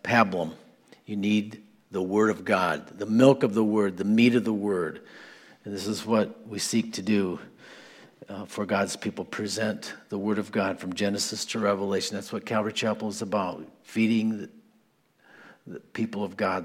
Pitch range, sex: 105-130 Hz, male